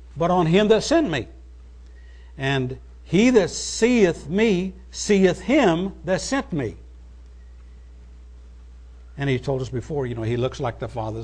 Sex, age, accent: male, 60-79, American